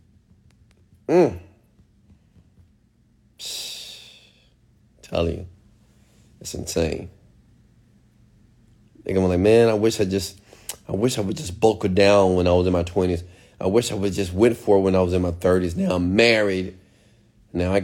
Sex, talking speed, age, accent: male, 155 wpm, 30-49, American